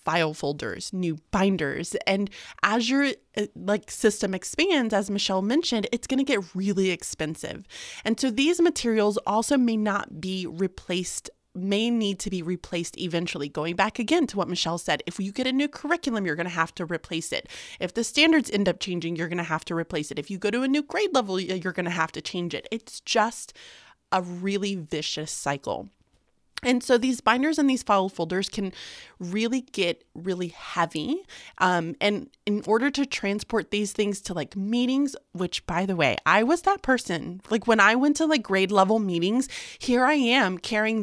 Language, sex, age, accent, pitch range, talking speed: English, female, 30-49, American, 180-245 Hz, 190 wpm